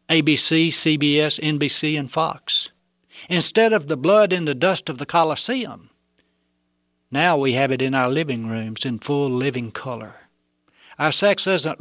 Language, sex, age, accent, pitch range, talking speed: English, male, 60-79, American, 125-165 Hz, 150 wpm